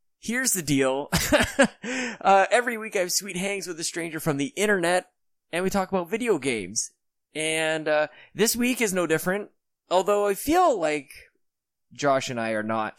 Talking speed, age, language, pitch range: 175 wpm, 20-39, English, 120-180 Hz